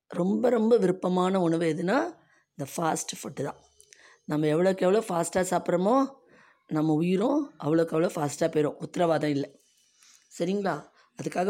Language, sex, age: Tamil, female, 20-39